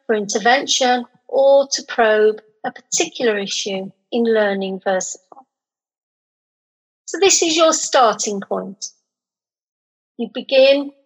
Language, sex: English, female